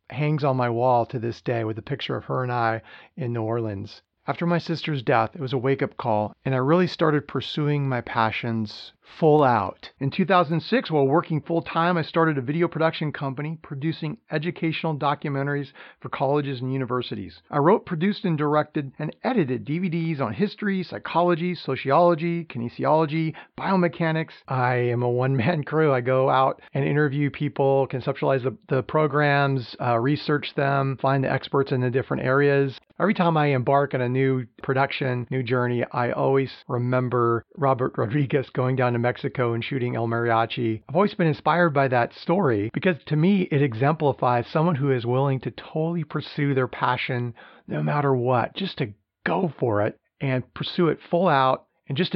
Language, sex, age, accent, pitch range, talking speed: English, male, 40-59, American, 125-155 Hz, 175 wpm